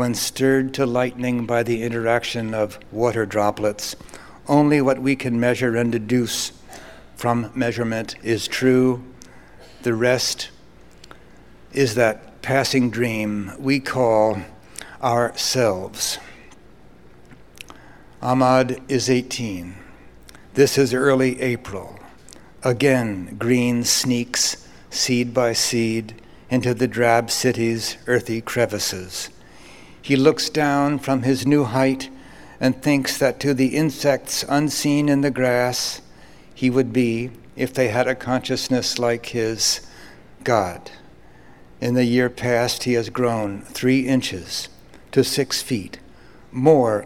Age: 60-79